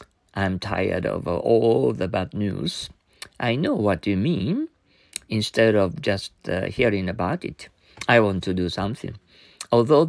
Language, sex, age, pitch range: Japanese, male, 50-69, 90-115 Hz